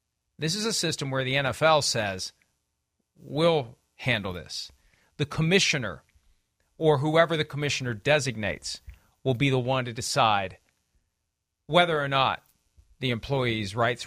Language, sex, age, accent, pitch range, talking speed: English, male, 40-59, American, 125-165 Hz, 130 wpm